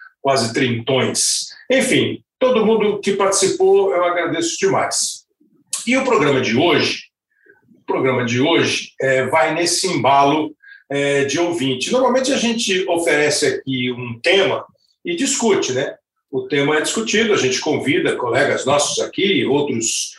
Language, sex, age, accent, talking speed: Portuguese, male, 50-69, Brazilian, 125 wpm